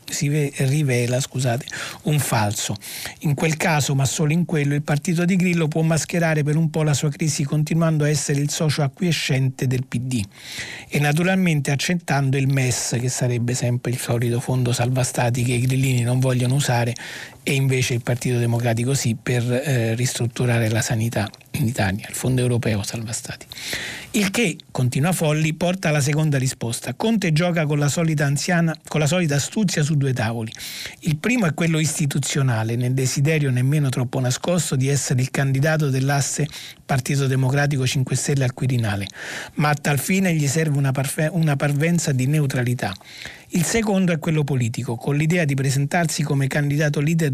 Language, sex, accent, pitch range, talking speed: Italian, male, native, 125-155 Hz, 165 wpm